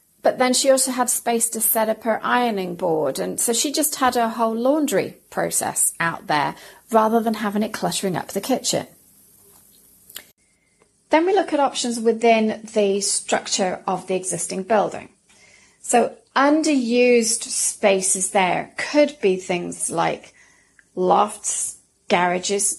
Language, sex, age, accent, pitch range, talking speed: English, female, 30-49, British, 190-240 Hz, 140 wpm